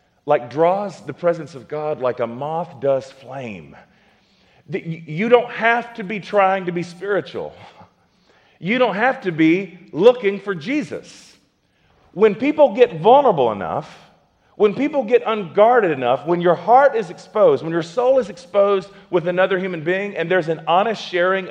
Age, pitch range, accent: 40-59, 160-215 Hz, American